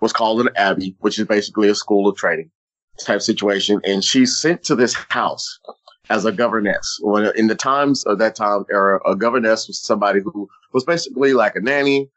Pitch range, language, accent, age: 100-120 Hz, English, American, 30-49